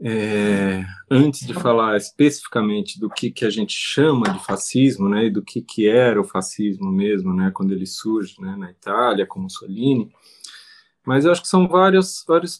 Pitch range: 115-175 Hz